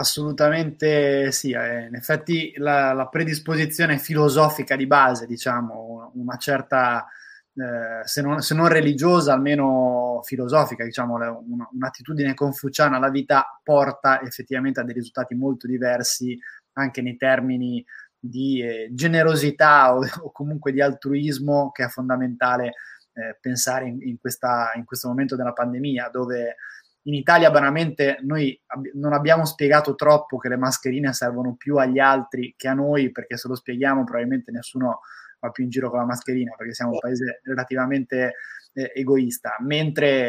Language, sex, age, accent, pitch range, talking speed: Italian, male, 20-39, native, 125-145 Hz, 150 wpm